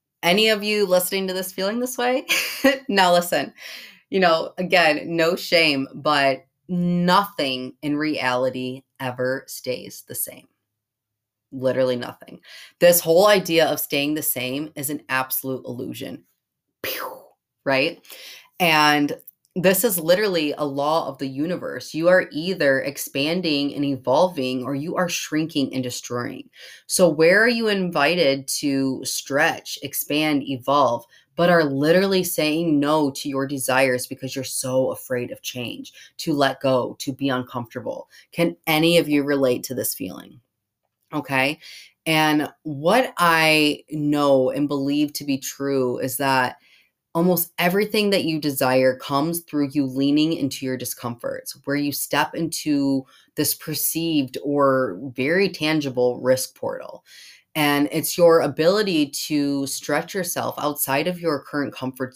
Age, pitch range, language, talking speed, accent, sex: 20-39, 135-165 Hz, English, 140 wpm, American, female